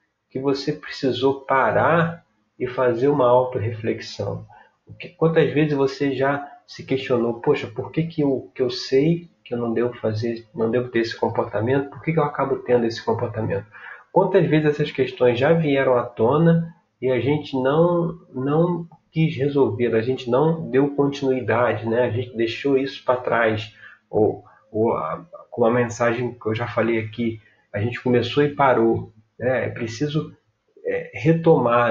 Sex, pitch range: male, 115-150 Hz